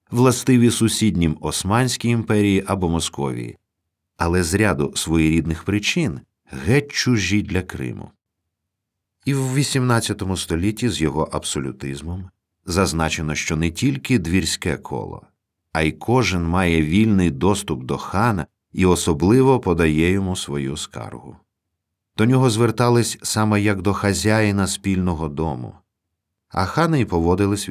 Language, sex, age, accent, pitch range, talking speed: Ukrainian, male, 50-69, native, 80-110 Hz, 120 wpm